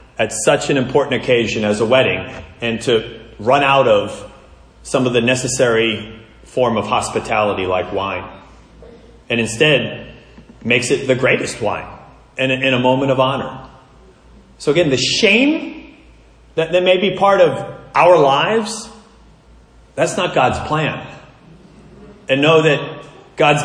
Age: 30-49